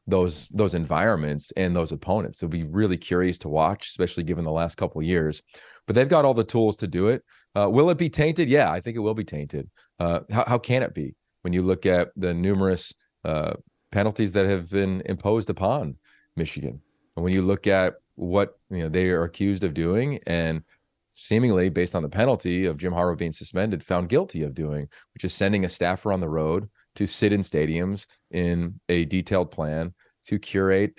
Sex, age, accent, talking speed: male, 30-49, American, 205 wpm